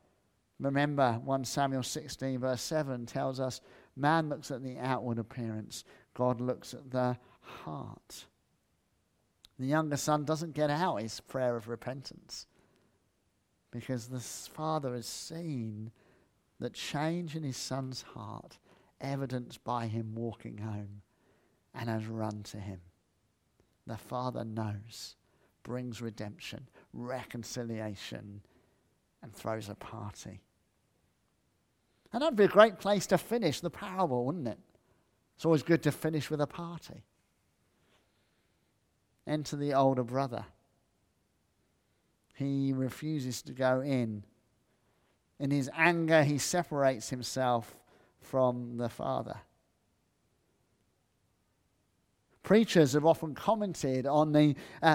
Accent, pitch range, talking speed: British, 115-155 Hz, 115 wpm